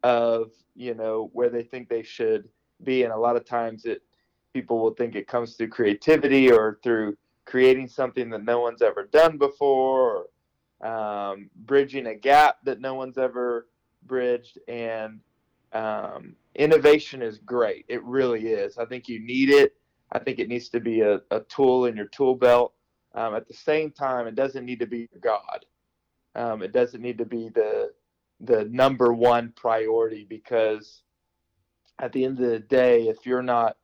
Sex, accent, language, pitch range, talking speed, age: male, American, English, 115-135 Hz, 175 wpm, 30-49